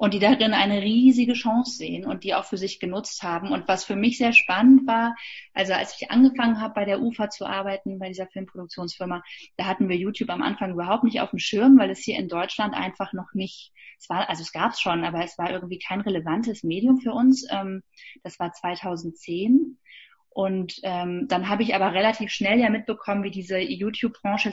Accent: German